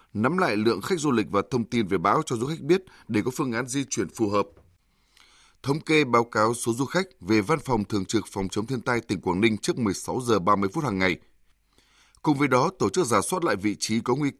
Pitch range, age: 105-145 Hz, 20-39